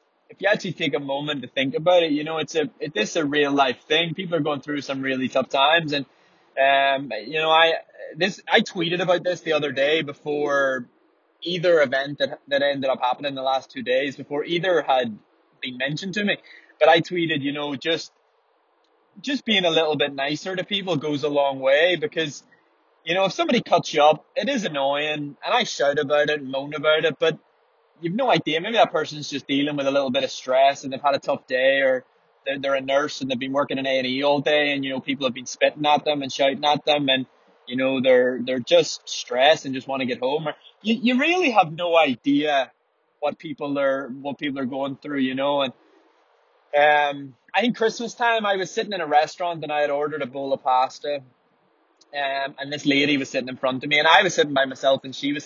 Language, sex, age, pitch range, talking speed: English, male, 20-39, 140-175 Hz, 235 wpm